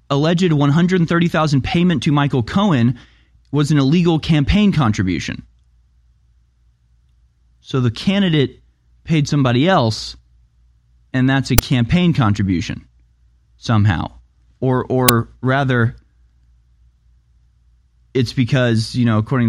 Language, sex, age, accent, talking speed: English, male, 20-39, American, 95 wpm